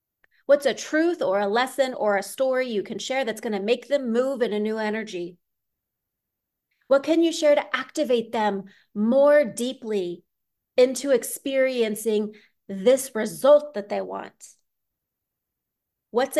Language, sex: English, female